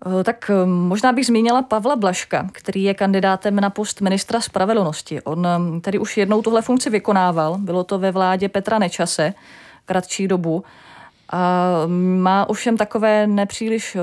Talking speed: 140 wpm